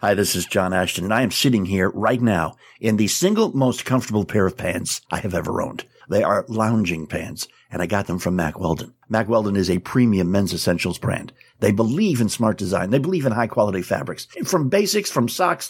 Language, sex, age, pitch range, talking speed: English, male, 50-69, 105-155 Hz, 220 wpm